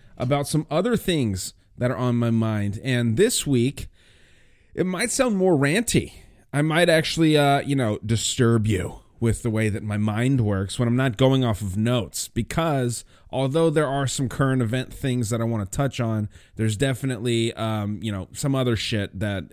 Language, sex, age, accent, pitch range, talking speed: English, male, 30-49, American, 110-135 Hz, 190 wpm